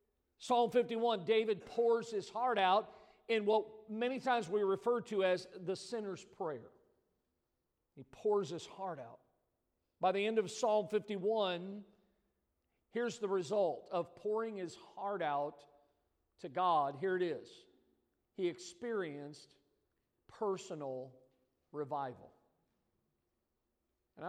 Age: 50-69